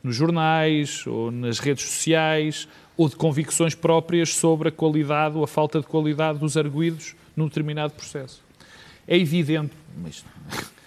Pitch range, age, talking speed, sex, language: 140-165 Hz, 40-59, 145 wpm, male, Portuguese